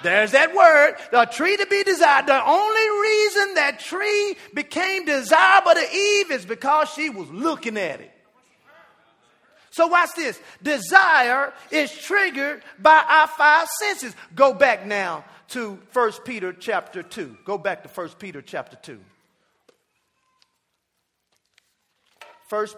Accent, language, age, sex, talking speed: American, English, 40-59, male, 130 wpm